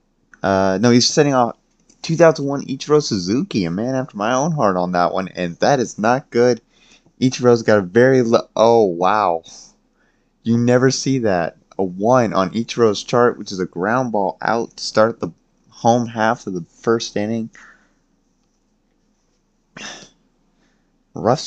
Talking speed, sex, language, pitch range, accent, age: 150 wpm, male, English, 100-125 Hz, American, 20-39